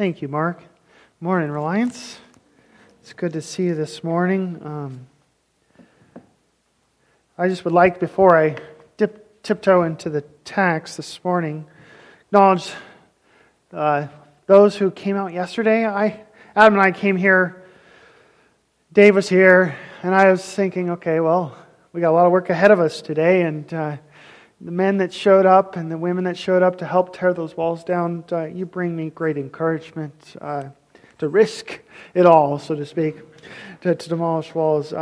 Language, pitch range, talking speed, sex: English, 160-195 Hz, 160 wpm, male